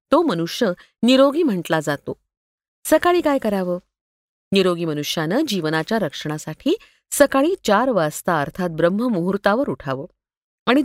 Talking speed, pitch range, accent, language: 105 wpm, 165-245 Hz, native, Marathi